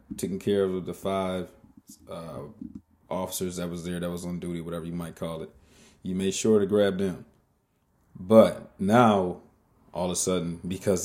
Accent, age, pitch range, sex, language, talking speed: American, 30-49, 85-100 Hz, male, English, 175 wpm